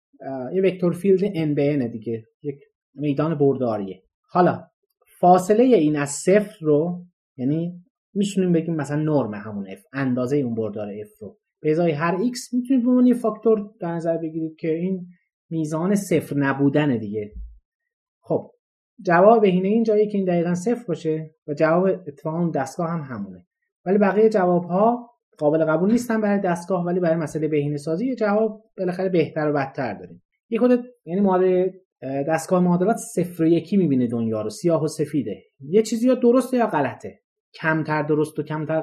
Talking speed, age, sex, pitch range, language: 160 wpm, 30-49, male, 150-210 Hz, Persian